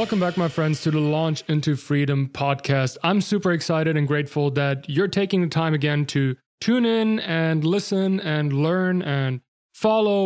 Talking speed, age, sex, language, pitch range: 175 wpm, 20-39, male, English, 130-165 Hz